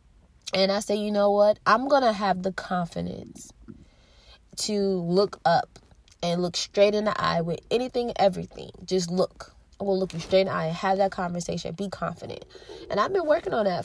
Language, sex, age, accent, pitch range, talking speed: English, female, 20-39, American, 180-220 Hz, 195 wpm